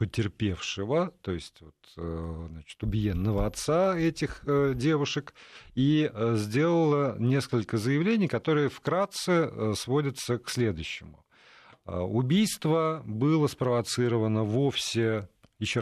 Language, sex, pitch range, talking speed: Russian, male, 95-140 Hz, 80 wpm